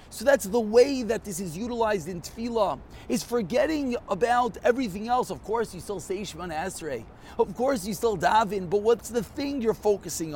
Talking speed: 190 wpm